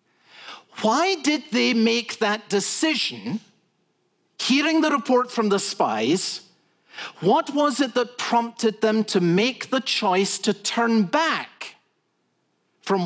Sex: male